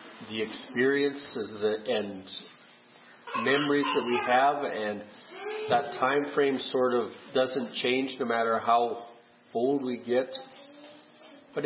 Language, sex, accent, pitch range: English, male, American, 135-195 Hz